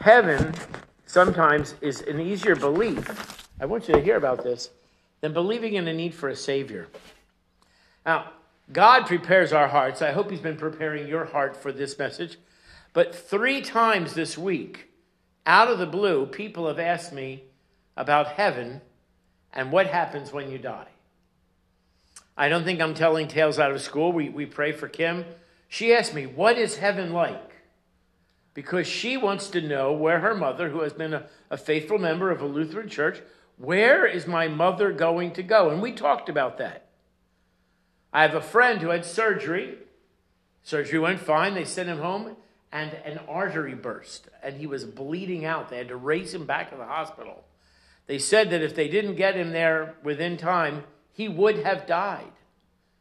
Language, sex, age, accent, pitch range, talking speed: English, male, 50-69, American, 145-190 Hz, 175 wpm